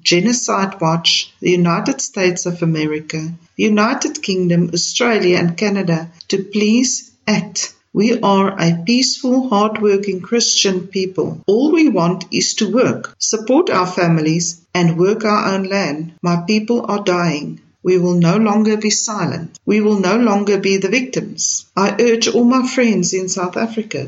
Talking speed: 150 wpm